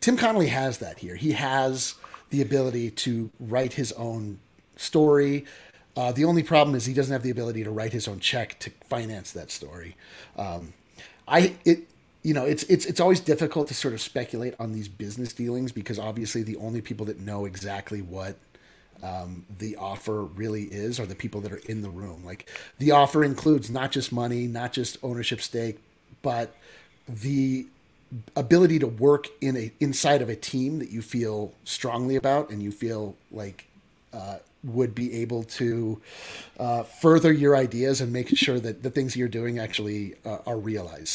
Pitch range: 110-145 Hz